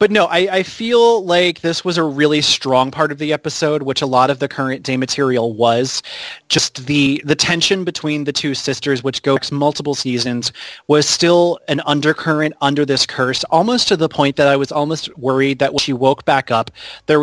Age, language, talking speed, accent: 30-49, English, 205 wpm, American